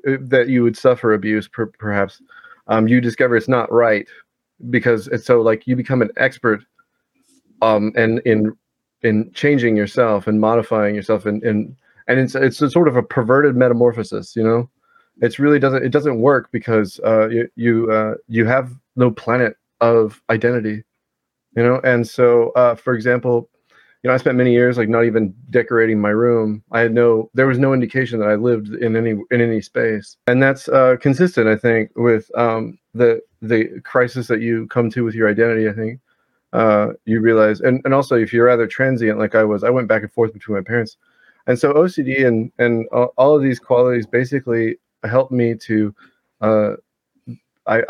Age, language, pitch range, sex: 30-49, English, 110-125 Hz, male